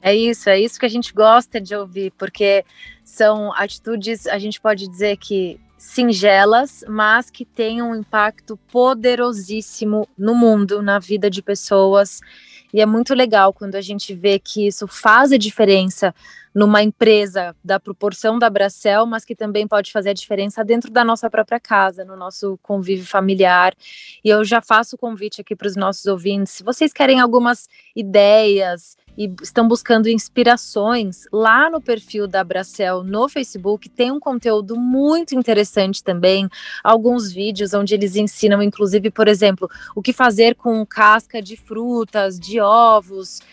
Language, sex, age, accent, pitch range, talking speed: Portuguese, female, 20-39, Brazilian, 200-230 Hz, 160 wpm